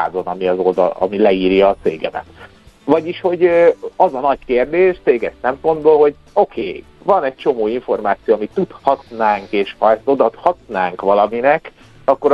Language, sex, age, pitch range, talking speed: Hungarian, male, 50-69, 110-170 Hz, 140 wpm